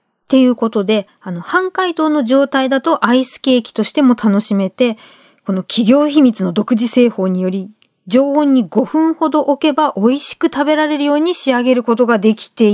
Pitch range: 215-300 Hz